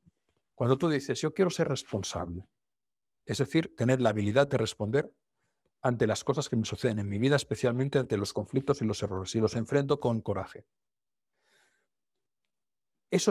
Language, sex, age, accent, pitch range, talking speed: Spanish, male, 60-79, Spanish, 110-145 Hz, 160 wpm